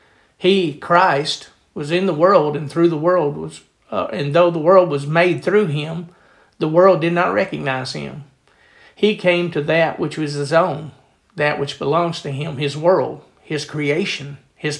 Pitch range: 145-175 Hz